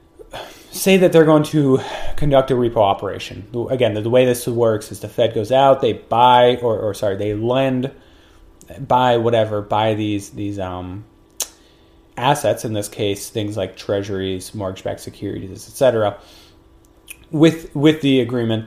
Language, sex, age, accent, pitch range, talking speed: English, male, 30-49, American, 105-130 Hz, 150 wpm